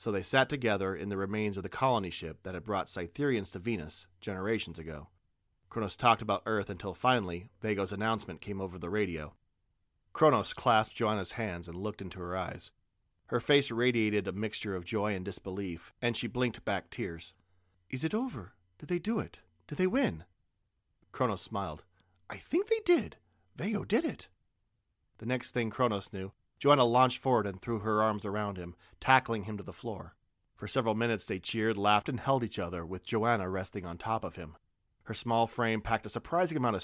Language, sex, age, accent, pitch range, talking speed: English, male, 40-59, American, 95-120 Hz, 190 wpm